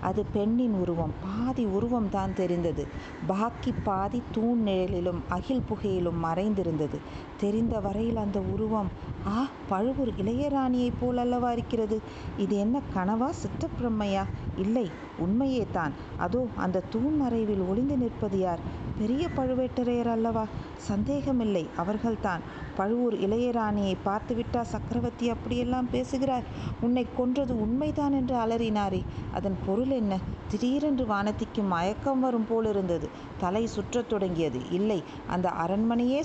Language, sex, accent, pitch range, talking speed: Tamil, female, native, 185-235 Hz, 115 wpm